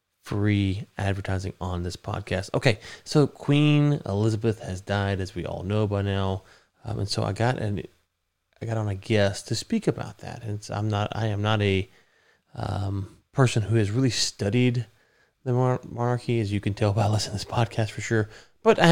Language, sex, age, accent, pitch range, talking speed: English, male, 20-39, American, 100-120 Hz, 195 wpm